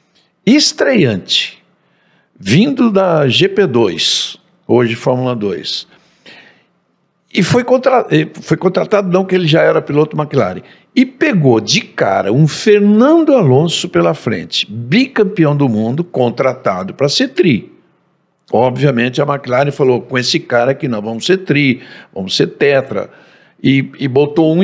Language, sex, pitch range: Portuguese, male, 120-185 Hz